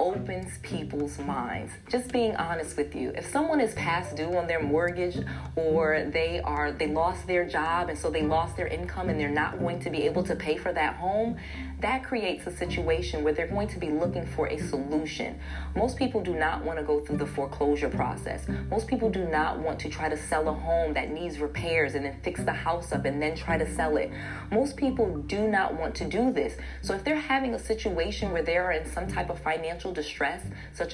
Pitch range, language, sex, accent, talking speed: 150-190 Hz, English, female, American, 225 wpm